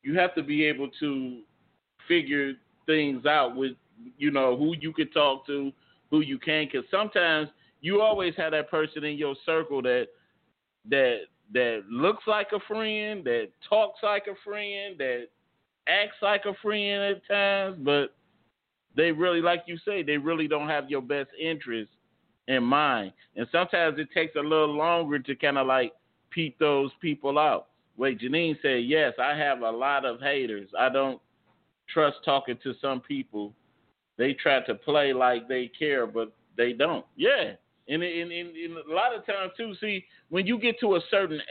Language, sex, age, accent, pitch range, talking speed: English, male, 40-59, American, 140-180 Hz, 180 wpm